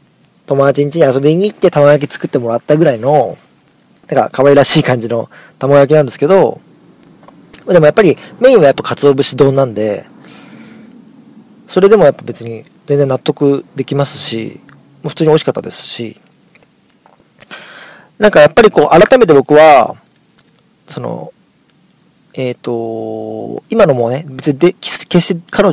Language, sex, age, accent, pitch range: Japanese, male, 40-59, native, 125-205 Hz